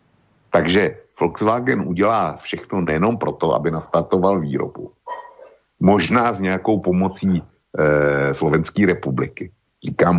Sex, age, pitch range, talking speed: male, 60-79, 75-95 Hz, 100 wpm